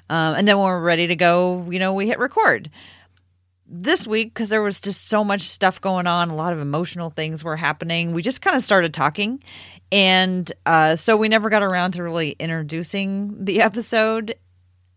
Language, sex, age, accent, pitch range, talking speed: English, female, 30-49, American, 145-185 Hz, 195 wpm